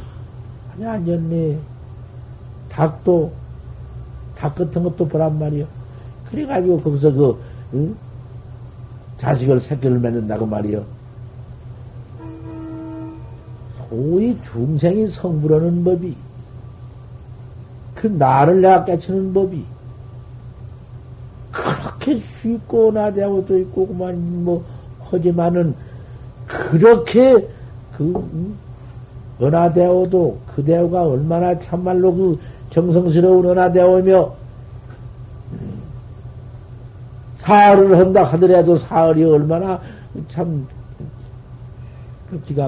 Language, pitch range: Korean, 120-170 Hz